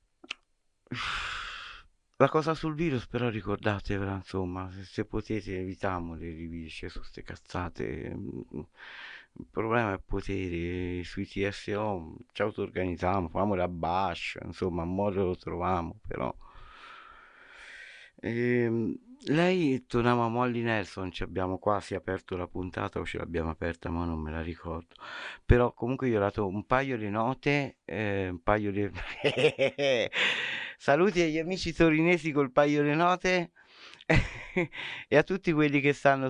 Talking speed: 135 wpm